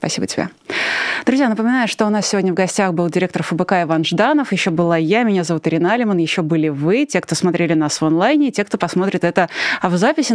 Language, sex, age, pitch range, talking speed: Russian, female, 20-39, 165-205 Hz, 225 wpm